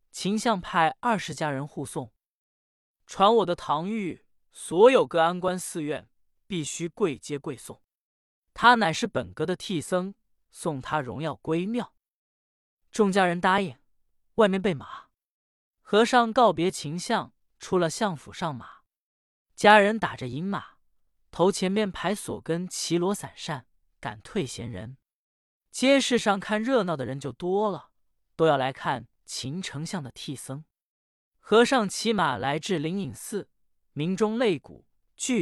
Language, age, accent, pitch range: Chinese, 20-39, native, 135-215 Hz